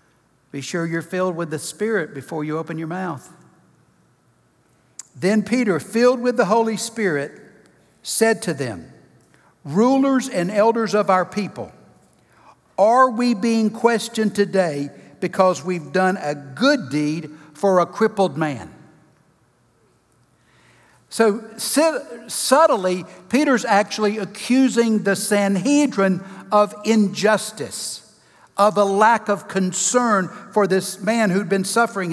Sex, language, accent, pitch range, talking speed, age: male, English, American, 185-240 Hz, 120 wpm, 60-79